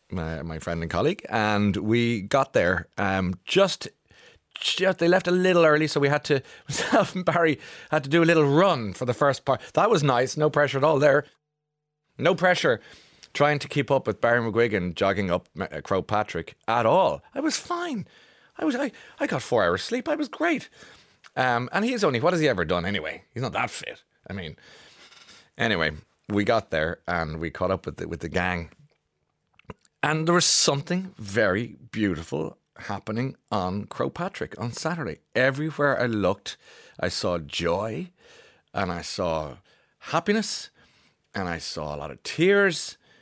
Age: 30-49